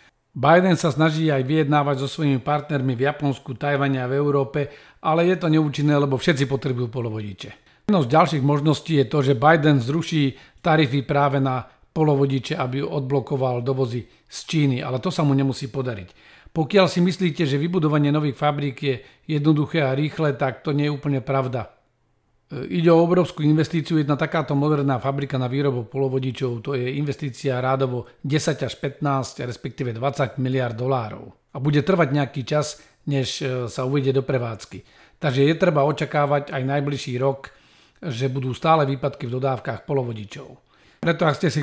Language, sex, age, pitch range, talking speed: Slovak, male, 40-59, 135-150 Hz, 165 wpm